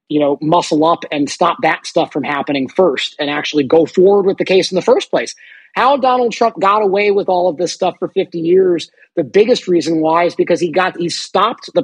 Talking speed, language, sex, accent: 235 wpm, English, male, American